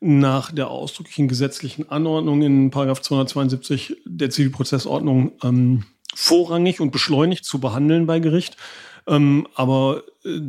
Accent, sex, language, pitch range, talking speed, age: German, male, German, 135-150 Hz, 115 wpm, 40-59